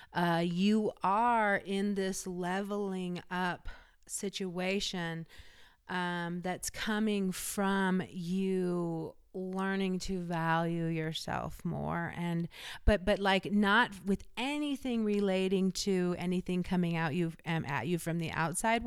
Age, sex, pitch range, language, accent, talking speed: 30-49, female, 170-195 Hz, English, American, 120 wpm